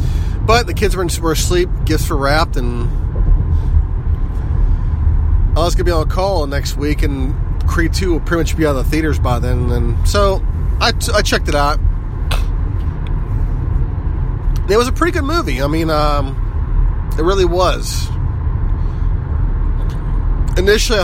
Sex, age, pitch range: male, 30-49, 80-110 Hz